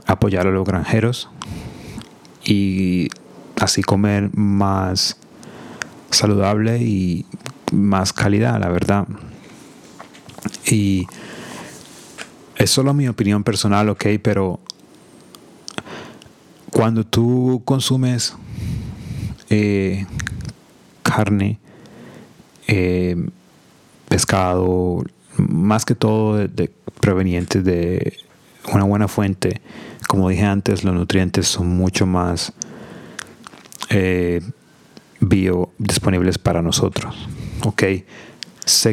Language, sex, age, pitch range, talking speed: English, male, 30-49, 95-110 Hz, 85 wpm